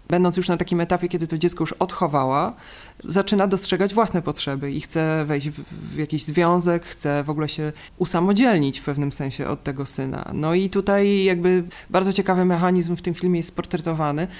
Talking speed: 180 wpm